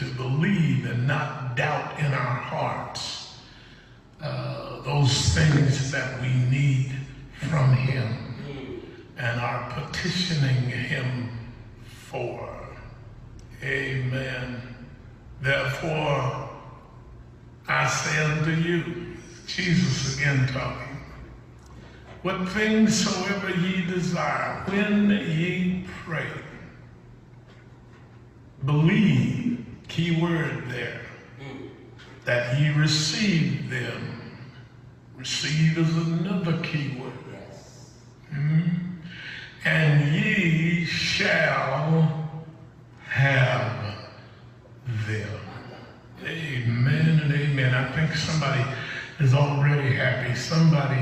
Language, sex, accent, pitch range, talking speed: English, male, American, 125-160 Hz, 80 wpm